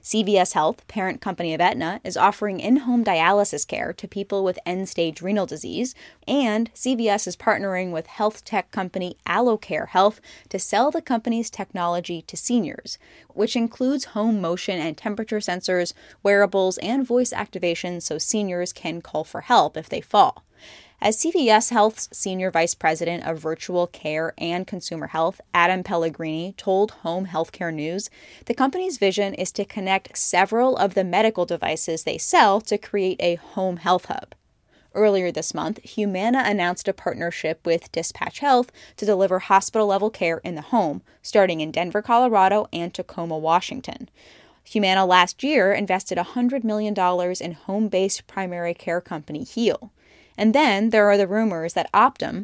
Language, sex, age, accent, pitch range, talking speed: English, female, 10-29, American, 175-215 Hz, 155 wpm